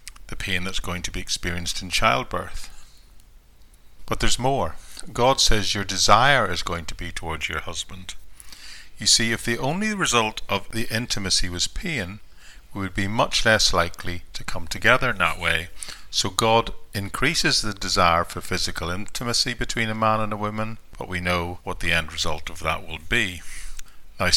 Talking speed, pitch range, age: 175 wpm, 85-105 Hz, 50-69